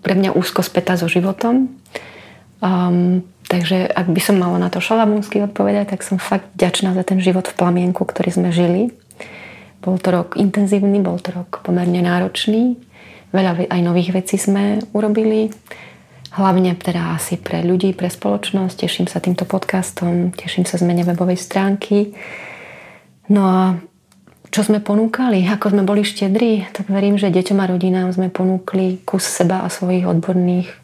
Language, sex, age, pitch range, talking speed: Slovak, female, 30-49, 180-200 Hz, 160 wpm